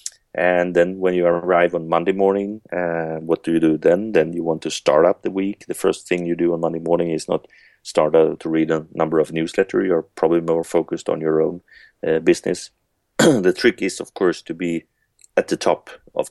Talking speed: 225 wpm